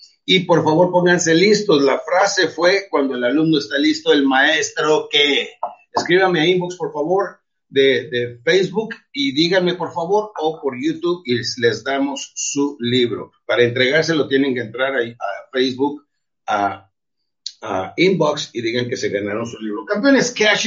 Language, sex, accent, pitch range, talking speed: Spanish, male, Mexican, 150-210 Hz, 165 wpm